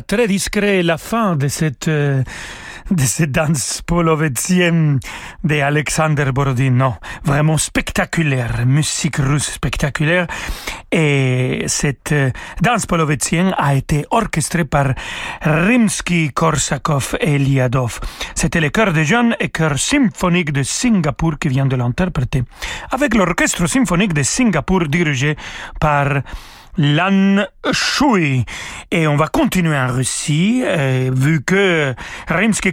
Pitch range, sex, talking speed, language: 140-185 Hz, male, 120 wpm, French